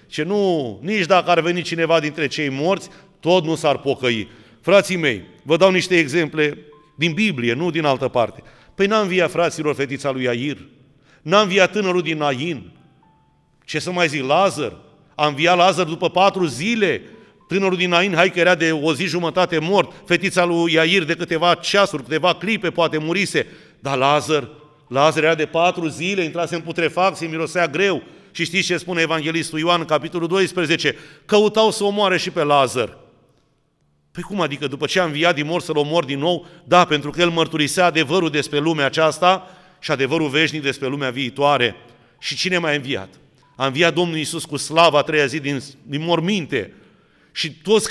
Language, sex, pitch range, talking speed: Romanian, male, 150-185 Hz, 180 wpm